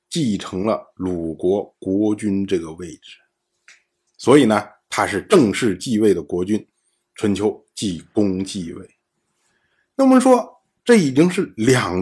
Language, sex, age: Chinese, male, 50-69